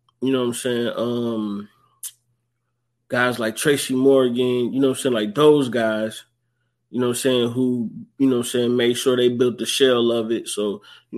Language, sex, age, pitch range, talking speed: English, male, 20-39, 115-130 Hz, 210 wpm